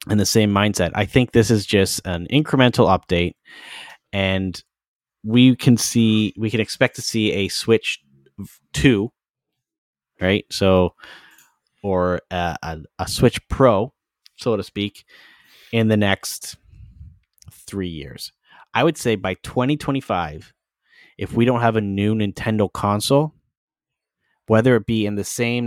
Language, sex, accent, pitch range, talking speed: English, male, American, 95-115 Hz, 135 wpm